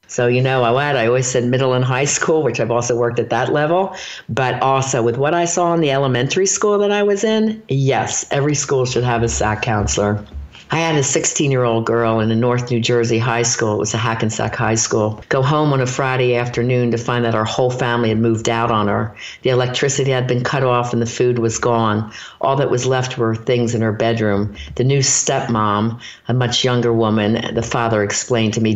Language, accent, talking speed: English, American, 220 wpm